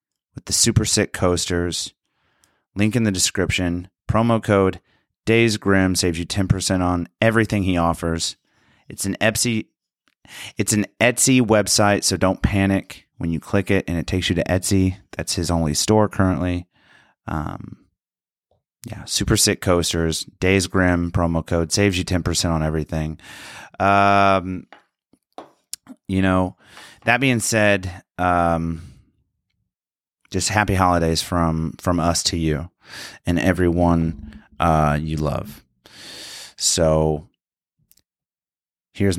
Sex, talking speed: male, 125 wpm